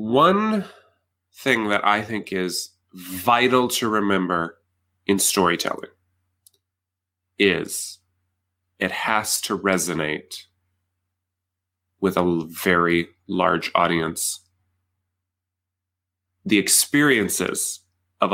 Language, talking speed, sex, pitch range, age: English, 80 wpm, male, 90-110 Hz, 30-49